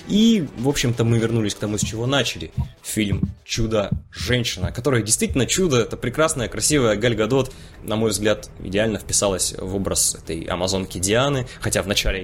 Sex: male